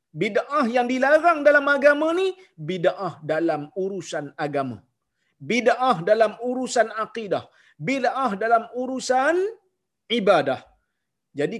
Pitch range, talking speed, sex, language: 165-245 Hz, 100 wpm, male, Malayalam